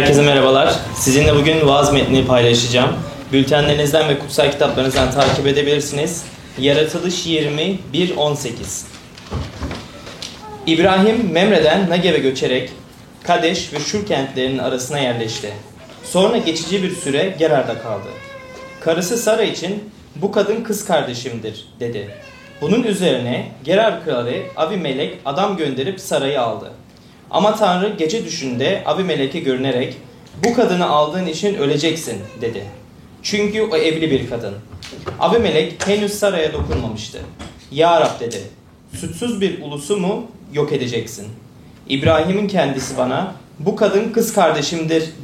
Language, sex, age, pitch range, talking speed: Turkish, male, 30-49, 135-195 Hz, 110 wpm